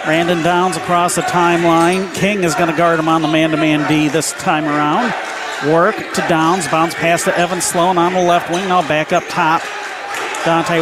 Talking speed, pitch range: 190 wpm, 180-230 Hz